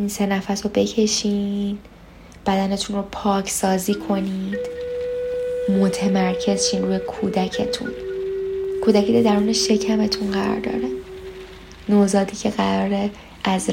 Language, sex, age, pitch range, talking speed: Persian, female, 10-29, 195-315 Hz, 100 wpm